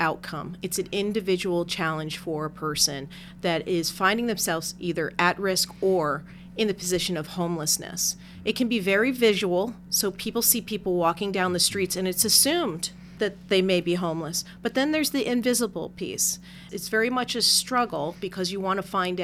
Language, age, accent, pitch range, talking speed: English, 40-59, American, 175-215 Hz, 180 wpm